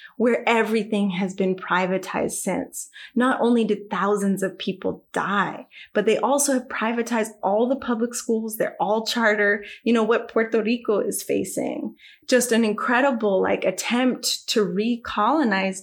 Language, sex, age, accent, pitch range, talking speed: English, female, 20-39, American, 195-240 Hz, 150 wpm